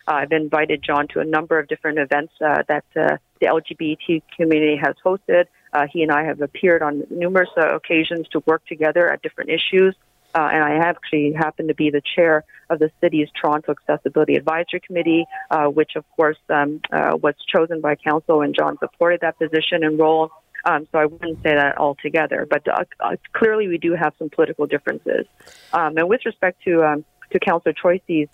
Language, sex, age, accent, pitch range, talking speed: English, female, 40-59, American, 150-170 Hz, 195 wpm